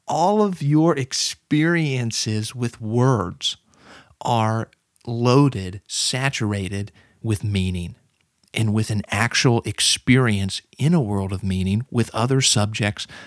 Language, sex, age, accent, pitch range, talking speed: English, male, 40-59, American, 105-140 Hz, 110 wpm